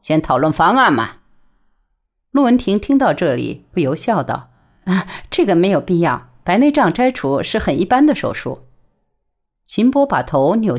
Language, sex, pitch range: Chinese, female, 150-235 Hz